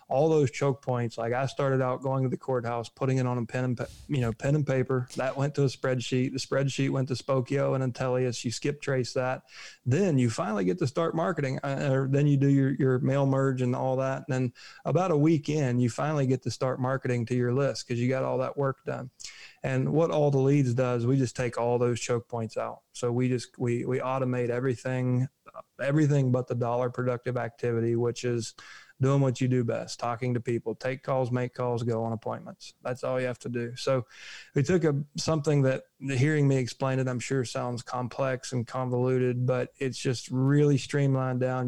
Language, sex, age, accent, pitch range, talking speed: English, male, 30-49, American, 125-135 Hz, 220 wpm